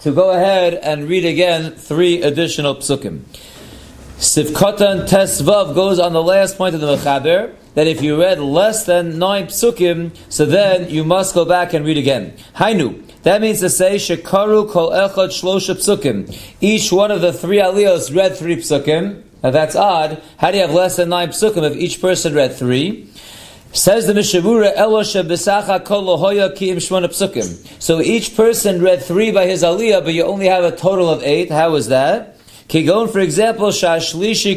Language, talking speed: English, 170 wpm